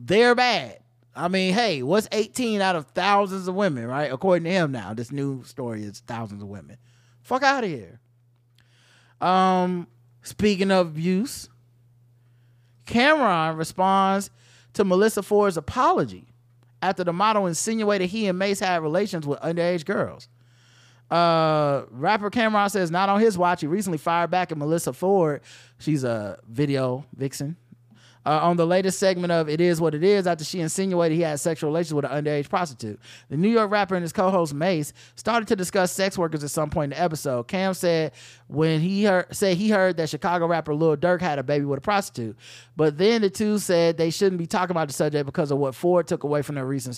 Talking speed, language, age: 190 wpm, English, 20-39